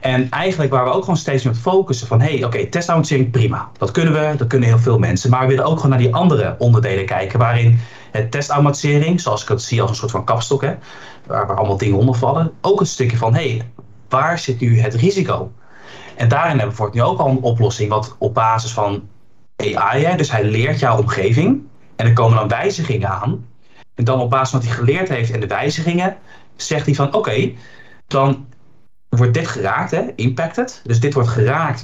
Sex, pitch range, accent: male, 115-145 Hz, Dutch